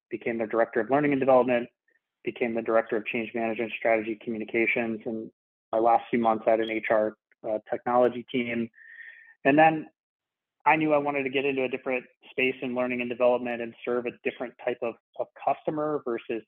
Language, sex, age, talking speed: English, male, 20-39, 185 wpm